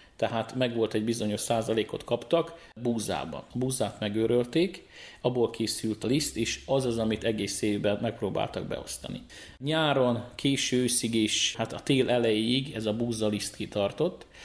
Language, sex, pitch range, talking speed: Hungarian, male, 105-125 Hz, 140 wpm